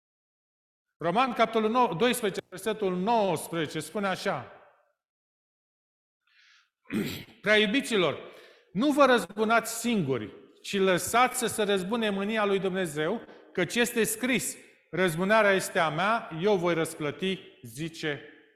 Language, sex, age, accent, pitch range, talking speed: Romanian, male, 40-59, native, 150-210 Hz, 95 wpm